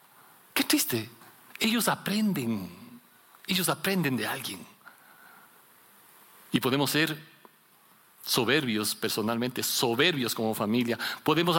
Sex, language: male, Spanish